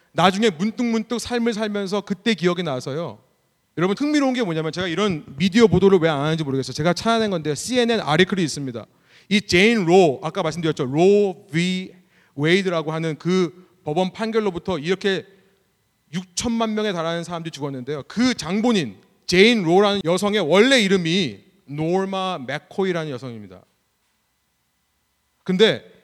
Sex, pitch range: male, 150-200 Hz